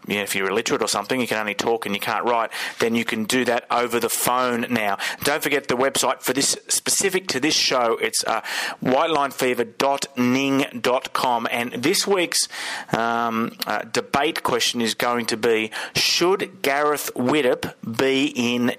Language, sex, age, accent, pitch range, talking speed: English, male, 30-49, Australian, 110-135 Hz, 170 wpm